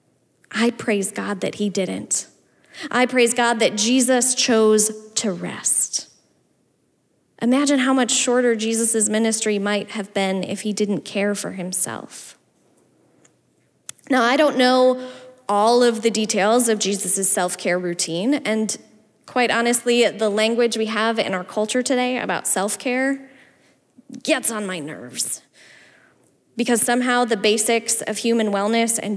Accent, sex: American, female